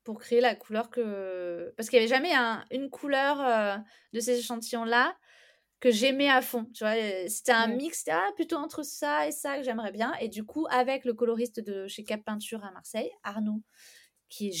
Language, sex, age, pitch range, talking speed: French, female, 20-39, 215-260 Hz, 210 wpm